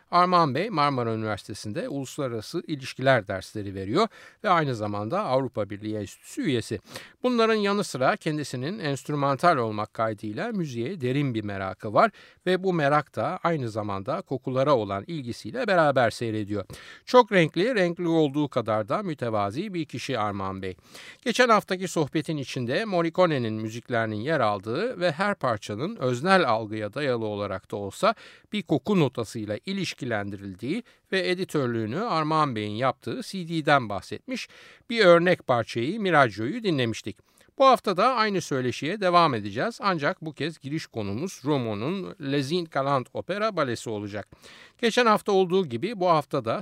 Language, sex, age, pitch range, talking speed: Turkish, male, 60-79, 115-180 Hz, 135 wpm